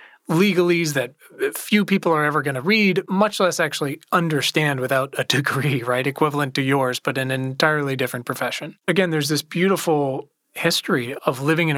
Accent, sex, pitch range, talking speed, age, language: American, male, 130-160 Hz, 175 wpm, 30-49, English